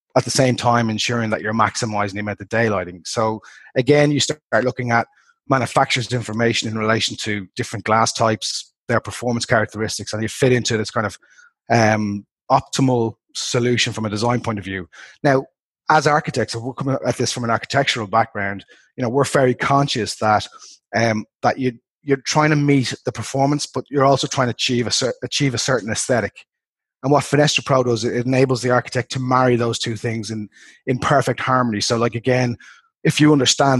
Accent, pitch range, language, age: Irish, 110-130 Hz, English, 30-49